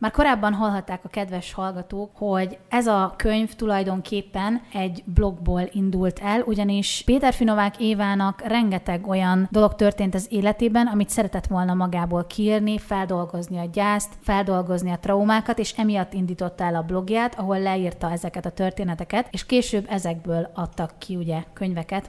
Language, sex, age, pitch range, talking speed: Hungarian, female, 30-49, 185-220 Hz, 145 wpm